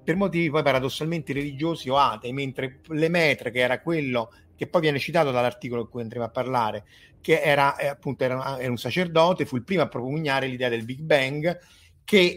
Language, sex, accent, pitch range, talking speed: Italian, male, native, 120-155 Hz, 195 wpm